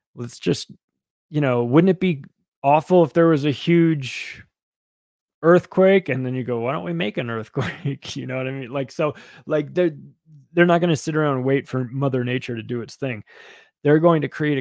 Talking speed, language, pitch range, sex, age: 215 wpm, English, 130-160 Hz, male, 20-39